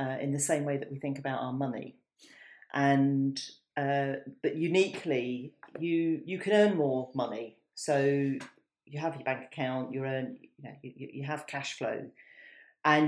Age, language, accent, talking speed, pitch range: 40-59, English, British, 170 wpm, 130-150 Hz